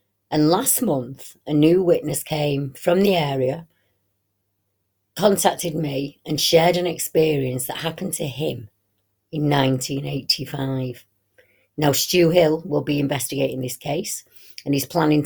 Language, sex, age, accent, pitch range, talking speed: English, female, 30-49, British, 120-160 Hz, 130 wpm